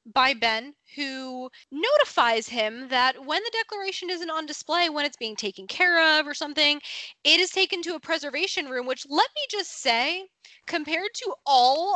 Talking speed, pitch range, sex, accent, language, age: 175 wpm, 225-305 Hz, female, American, English, 10-29